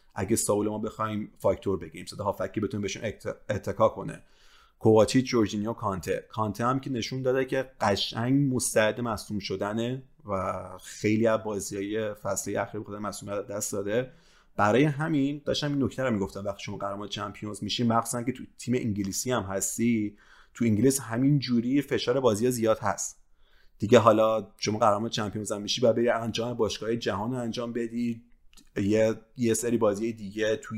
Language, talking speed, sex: Persian, 155 wpm, male